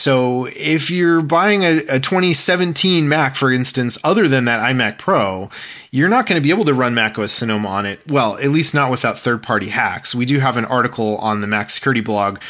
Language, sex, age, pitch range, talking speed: English, male, 20-39, 120-165 Hz, 215 wpm